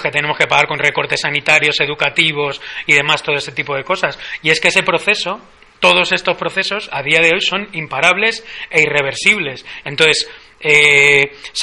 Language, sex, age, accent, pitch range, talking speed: Spanish, male, 30-49, Spanish, 145-175 Hz, 175 wpm